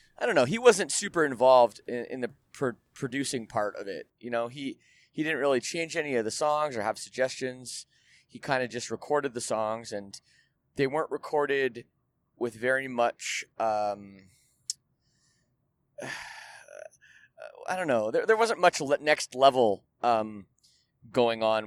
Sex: male